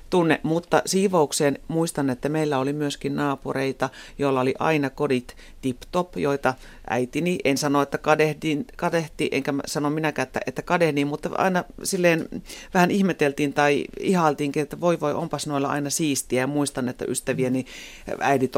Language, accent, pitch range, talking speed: Finnish, native, 135-170 Hz, 150 wpm